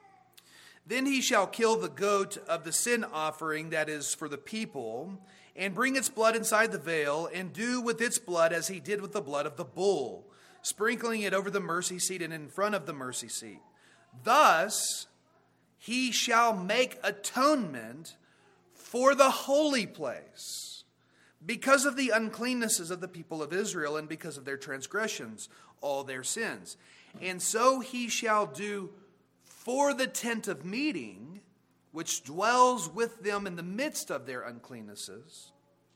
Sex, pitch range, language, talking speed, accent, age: male, 160-230 Hz, English, 160 wpm, American, 40-59